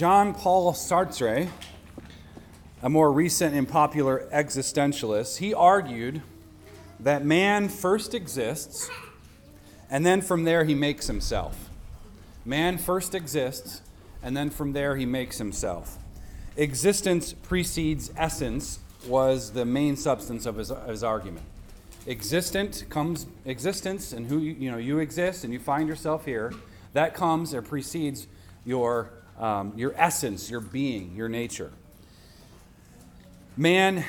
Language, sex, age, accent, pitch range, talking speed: English, male, 30-49, American, 105-155 Hz, 125 wpm